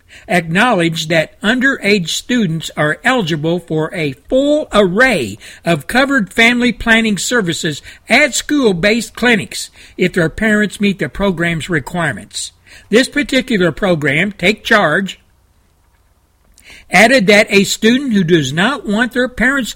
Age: 60-79